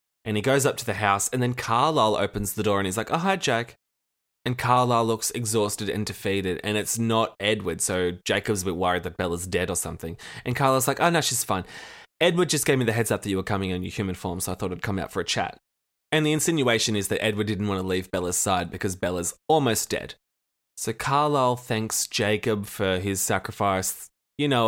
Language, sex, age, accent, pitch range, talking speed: English, male, 20-39, Australian, 95-120 Hz, 230 wpm